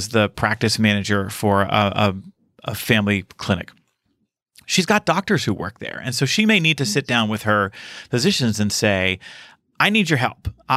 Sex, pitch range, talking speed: male, 105-140 Hz, 175 wpm